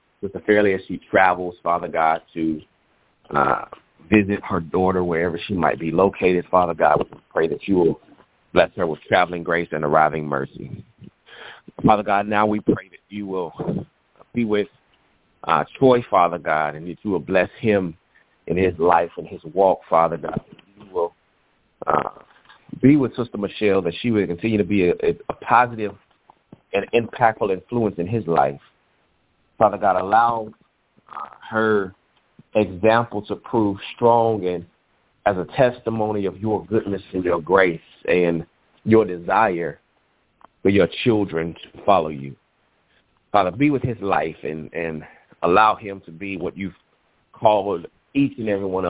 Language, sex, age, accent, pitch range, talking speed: English, male, 30-49, American, 85-110 Hz, 155 wpm